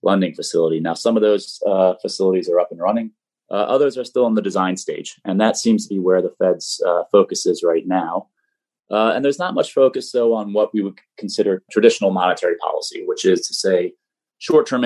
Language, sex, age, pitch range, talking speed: English, male, 30-49, 95-120 Hz, 215 wpm